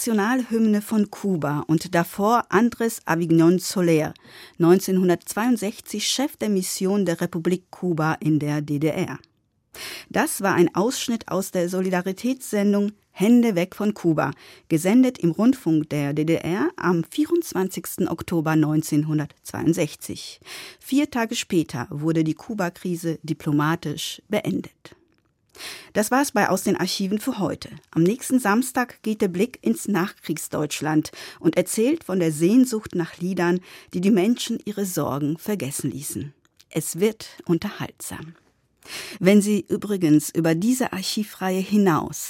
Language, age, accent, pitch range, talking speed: German, 50-69, German, 160-210 Hz, 120 wpm